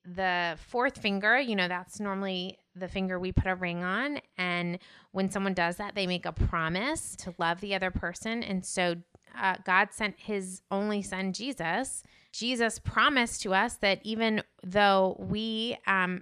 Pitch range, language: 180-210 Hz, English